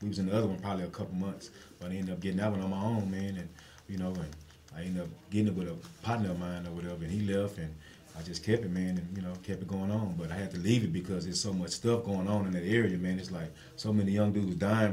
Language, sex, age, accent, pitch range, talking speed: English, male, 30-49, American, 90-110 Hz, 310 wpm